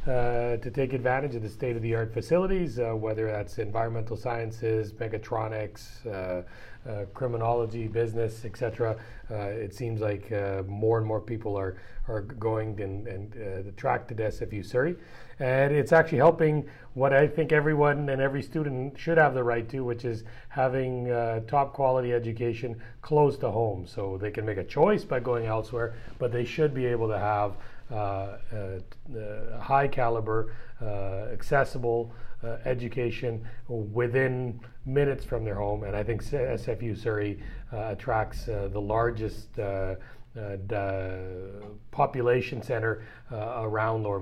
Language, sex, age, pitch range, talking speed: English, male, 40-59, 105-125 Hz, 150 wpm